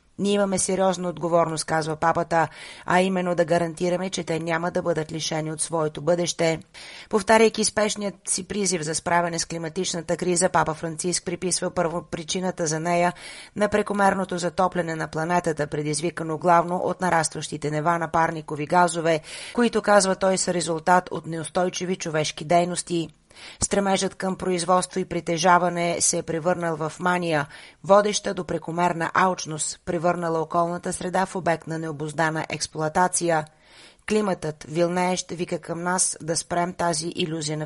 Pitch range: 160-180 Hz